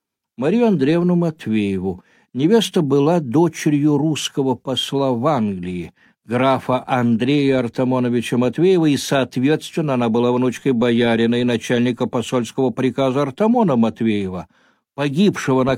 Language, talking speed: Russian, 105 wpm